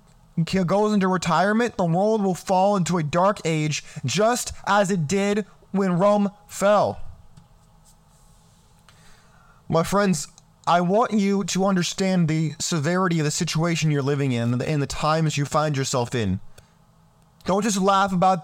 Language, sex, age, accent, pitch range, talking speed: English, male, 20-39, American, 165-225 Hz, 150 wpm